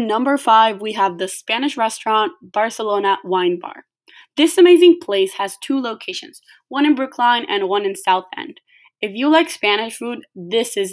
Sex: female